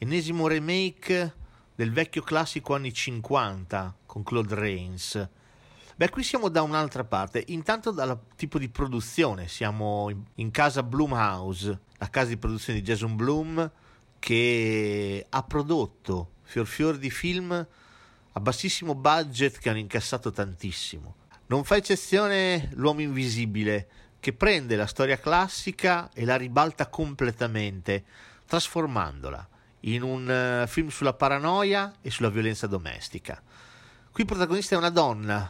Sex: male